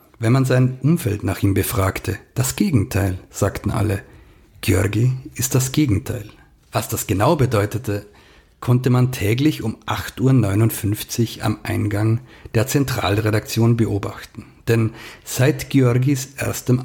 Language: German